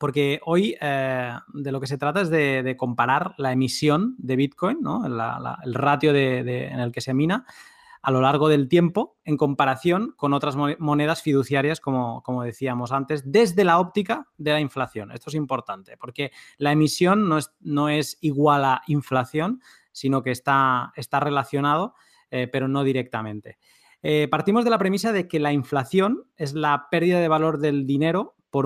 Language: Spanish